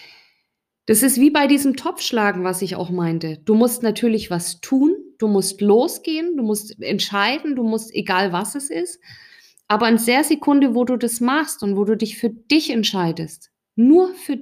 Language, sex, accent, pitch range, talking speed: German, female, German, 195-260 Hz, 185 wpm